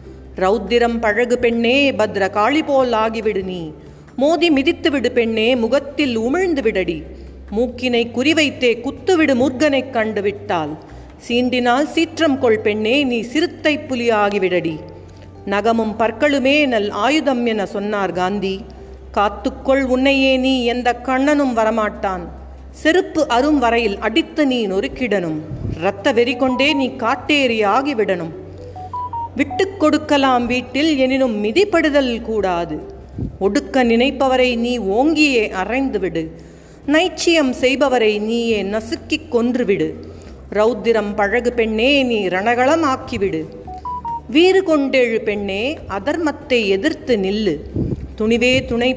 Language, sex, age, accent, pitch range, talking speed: Tamil, female, 50-69, native, 210-275 Hz, 100 wpm